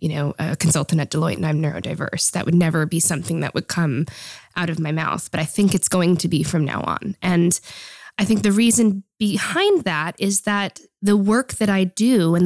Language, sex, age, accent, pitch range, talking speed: Dutch, female, 20-39, American, 165-190 Hz, 220 wpm